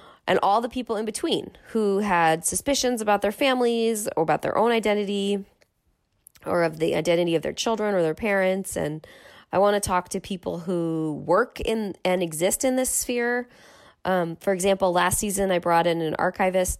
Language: English